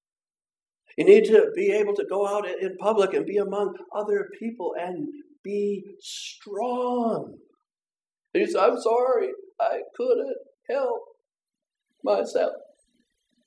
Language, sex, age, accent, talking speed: English, male, 60-79, American, 115 wpm